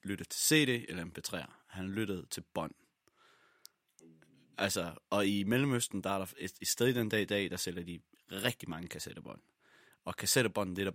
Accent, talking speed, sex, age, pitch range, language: native, 195 wpm, male, 30-49, 95-120 Hz, Danish